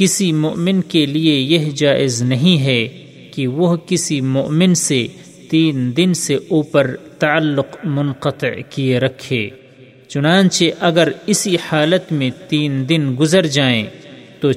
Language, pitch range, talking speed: Urdu, 130-165 Hz, 130 wpm